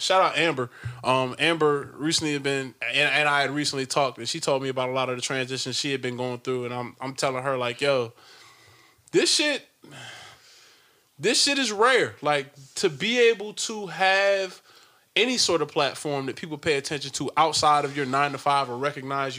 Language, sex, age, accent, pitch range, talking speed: English, male, 20-39, American, 120-150 Hz, 200 wpm